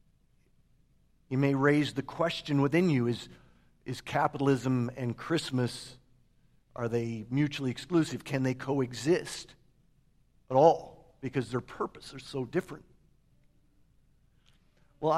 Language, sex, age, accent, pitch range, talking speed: English, male, 50-69, American, 135-180 Hz, 110 wpm